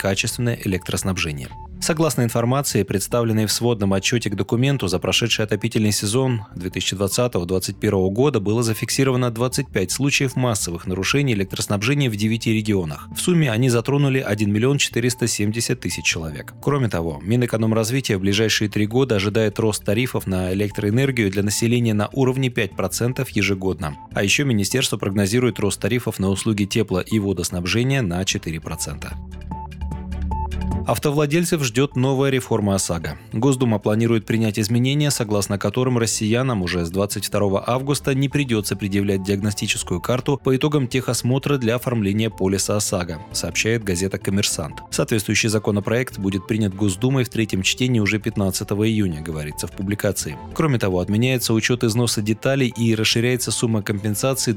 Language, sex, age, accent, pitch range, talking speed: Russian, male, 20-39, native, 100-125 Hz, 135 wpm